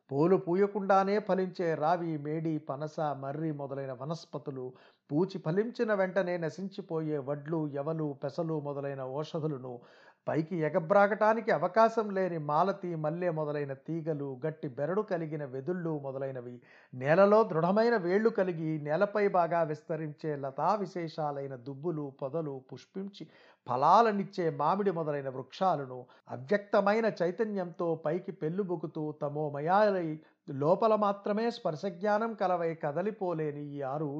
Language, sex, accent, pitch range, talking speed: Telugu, male, native, 150-190 Hz, 105 wpm